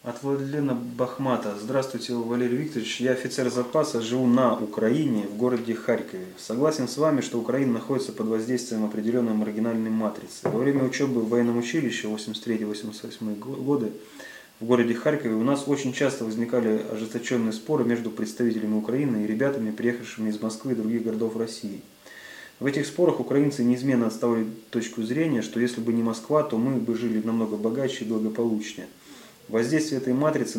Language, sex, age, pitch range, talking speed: Russian, male, 20-39, 110-130 Hz, 155 wpm